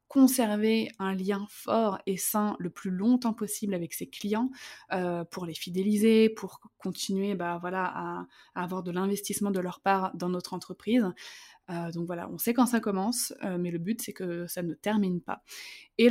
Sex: female